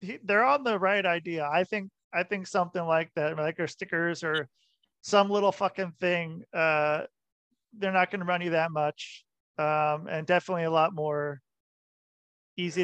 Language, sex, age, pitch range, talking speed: English, male, 40-59, 155-185 Hz, 170 wpm